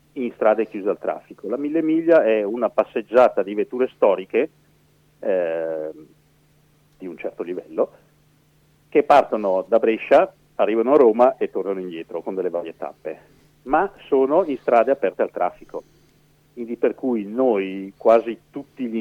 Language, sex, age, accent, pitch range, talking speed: Italian, male, 50-69, native, 90-150 Hz, 150 wpm